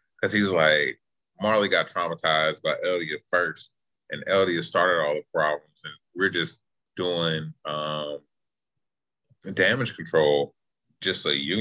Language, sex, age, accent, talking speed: English, male, 20-39, American, 130 wpm